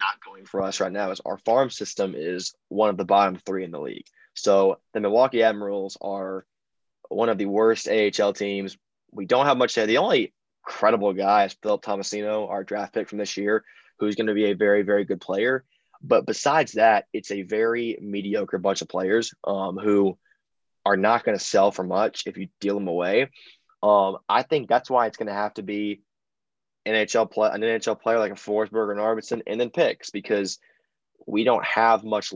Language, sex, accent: English, male, American